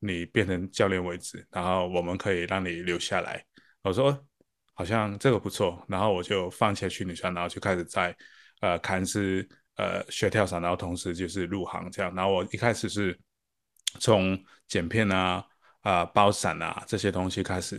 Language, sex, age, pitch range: Chinese, male, 20-39, 90-105 Hz